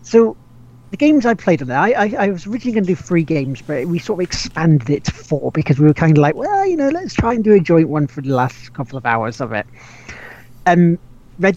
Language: English